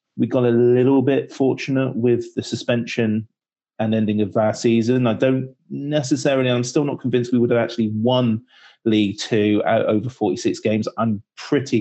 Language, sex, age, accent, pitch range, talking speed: English, male, 30-49, British, 110-125 Hz, 175 wpm